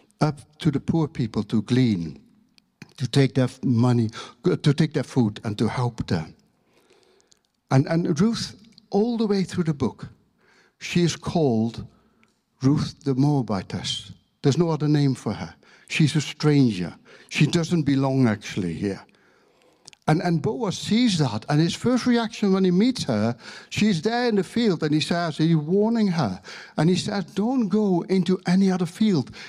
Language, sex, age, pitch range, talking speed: English, male, 60-79, 140-210 Hz, 165 wpm